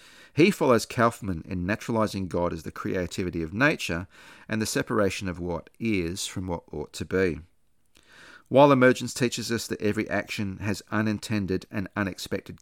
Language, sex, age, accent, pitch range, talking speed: English, male, 40-59, Australian, 90-110 Hz, 155 wpm